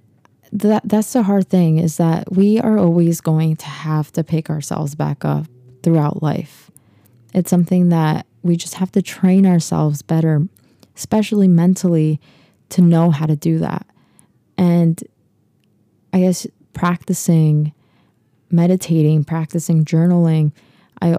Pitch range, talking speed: 150-175 Hz, 130 wpm